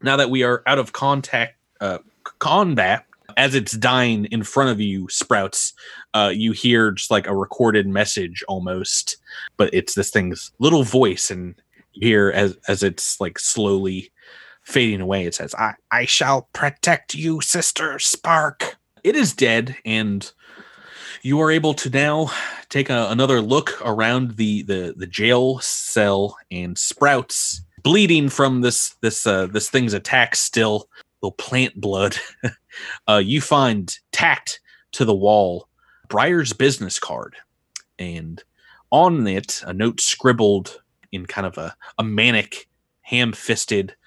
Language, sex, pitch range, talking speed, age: English, male, 100-130 Hz, 145 wpm, 30-49